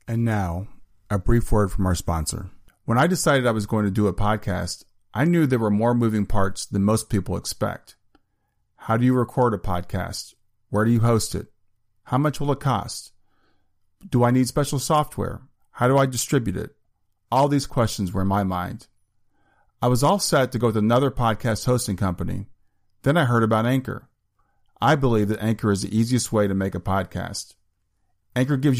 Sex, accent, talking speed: male, American, 190 wpm